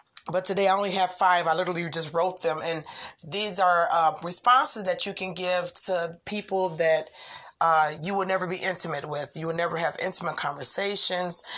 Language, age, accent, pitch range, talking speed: English, 30-49, American, 160-195 Hz, 185 wpm